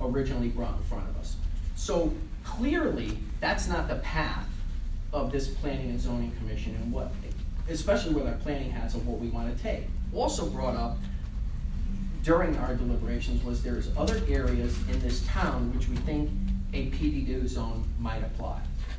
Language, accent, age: English, American, 40-59